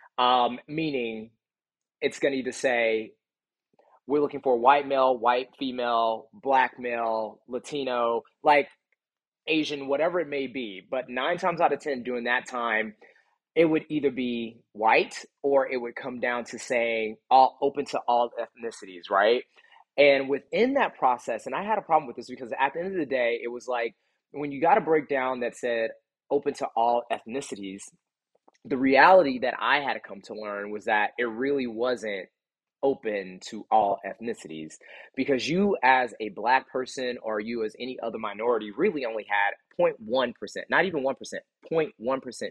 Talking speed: 165 wpm